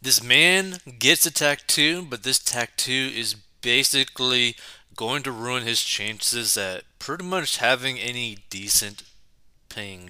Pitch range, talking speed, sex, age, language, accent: 105-140 Hz, 130 wpm, male, 30-49, English, American